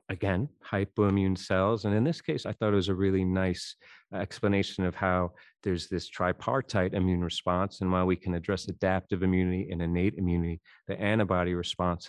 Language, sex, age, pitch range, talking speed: English, male, 40-59, 90-100 Hz, 175 wpm